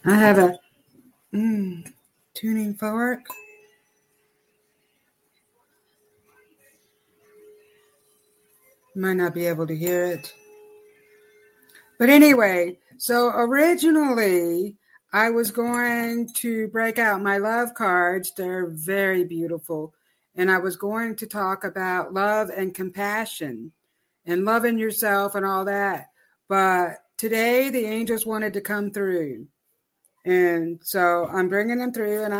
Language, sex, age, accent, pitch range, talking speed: English, female, 60-79, American, 190-235 Hz, 110 wpm